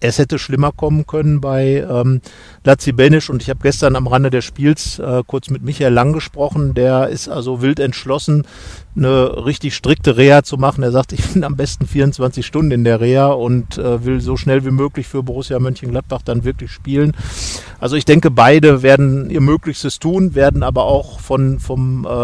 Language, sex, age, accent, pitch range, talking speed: German, male, 50-69, German, 125-140 Hz, 185 wpm